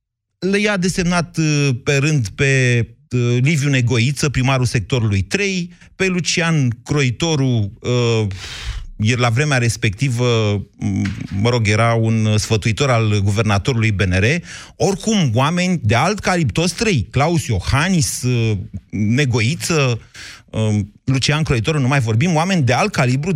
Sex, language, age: male, Romanian, 30-49